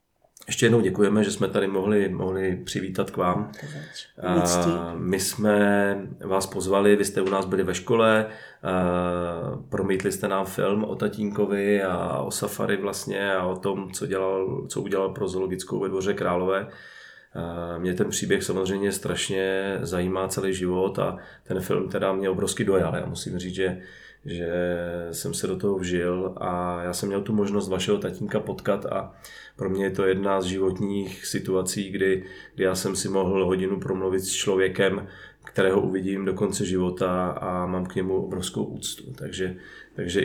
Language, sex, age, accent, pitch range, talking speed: Czech, male, 30-49, native, 90-100 Hz, 170 wpm